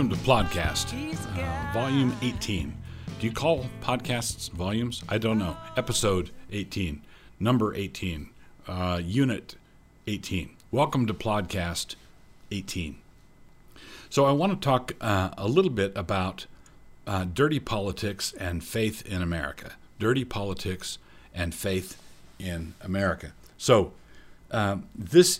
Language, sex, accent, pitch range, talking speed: English, male, American, 85-110 Hz, 115 wpm